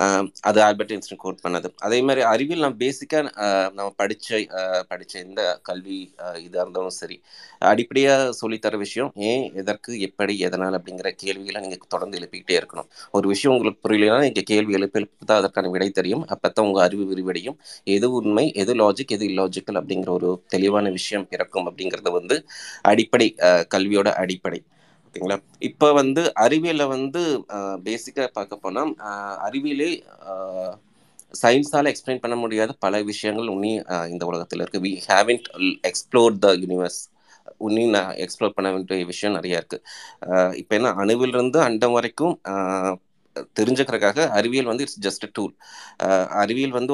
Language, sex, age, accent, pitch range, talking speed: Tamil, male, 20-39, native, 95-120 Hz, 140 wpm